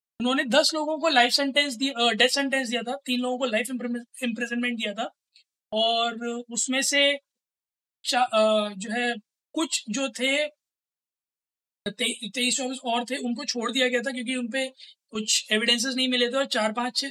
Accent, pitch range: native, 240-275 Hz